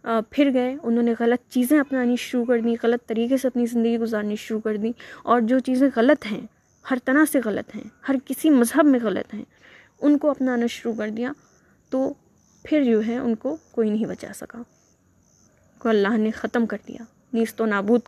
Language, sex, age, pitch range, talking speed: Urdu, female, 20-39, 225-260 Hz, 205 wpm